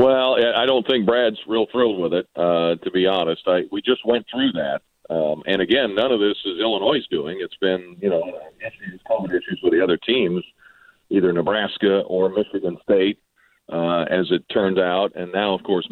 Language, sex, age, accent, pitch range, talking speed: English, male, 50-69, American, 90-105 Hz, 200 wpm